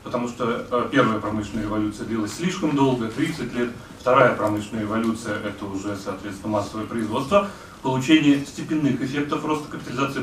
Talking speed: 140 wpm